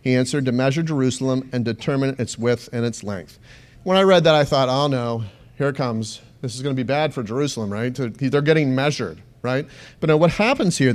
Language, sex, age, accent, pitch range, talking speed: English, male, 40-59, American, 125-165 Hz, 225 wpm